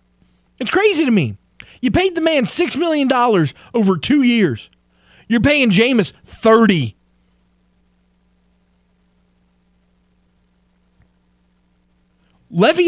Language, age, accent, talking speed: English, 30-49, American, 90 wpm